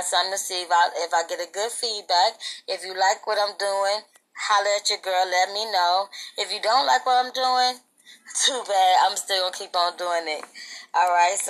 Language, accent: English, American